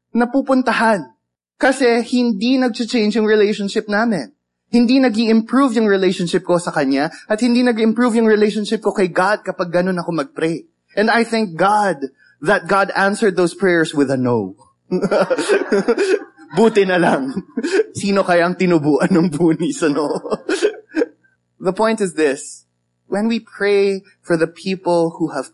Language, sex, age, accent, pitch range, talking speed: English, male, 20-39, Filipino, 150-205 Hz, 135 wpm